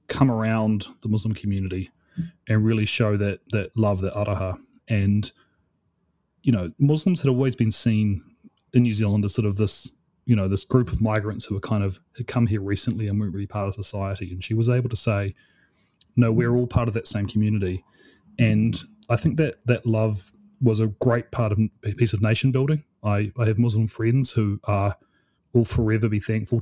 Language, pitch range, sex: English, 100-120 Hz, male